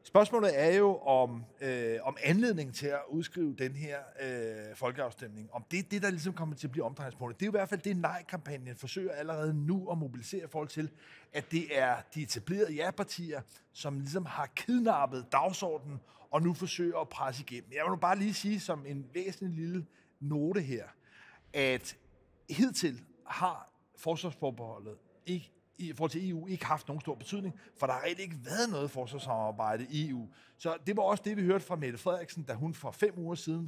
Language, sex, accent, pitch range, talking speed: Danish, male, native, 140-185 Hz, 195 wpm